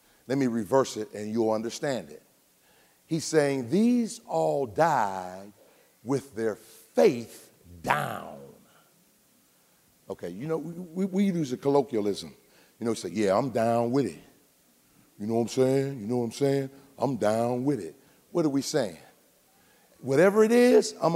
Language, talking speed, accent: English, 160 wpm, American